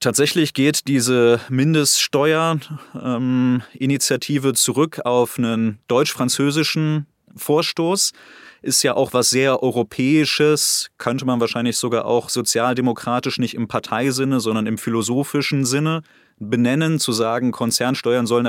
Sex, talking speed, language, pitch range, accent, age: male, 110 wpm, German, 120-140 Hz, German, 20-39